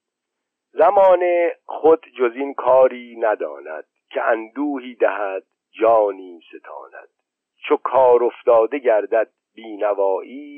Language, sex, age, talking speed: Persian, male, 50-69, 90 wpm